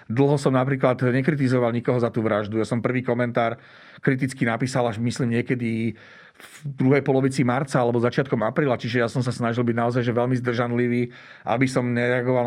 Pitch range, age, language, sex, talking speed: 110-130 Hz, 40-59, Slovak, male, 180 wpm